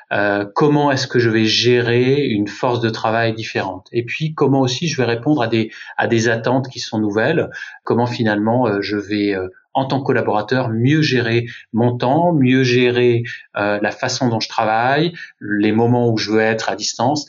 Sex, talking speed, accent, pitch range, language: male, 200 wpm, French, 110-135 Hz, French